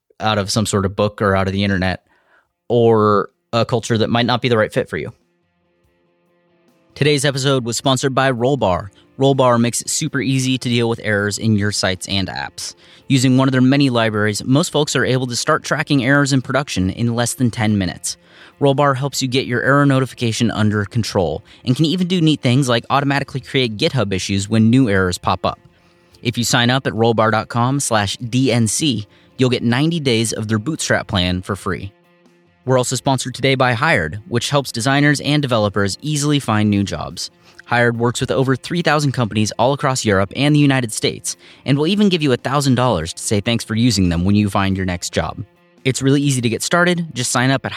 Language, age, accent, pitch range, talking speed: English, 30-49, American, 105-140 Hz, 205 wpm